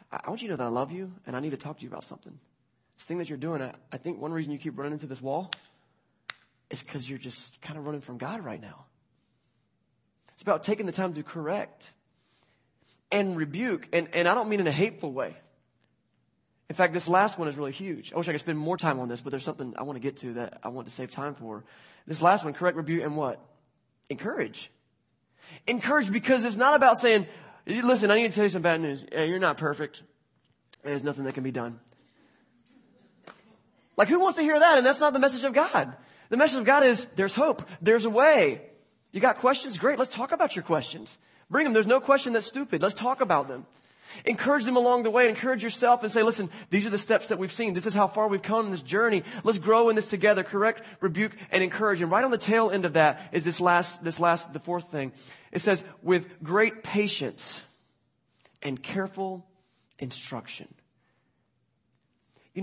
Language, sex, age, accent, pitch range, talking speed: English, male, 20-39, American, 140-220 Hz, 220 wpm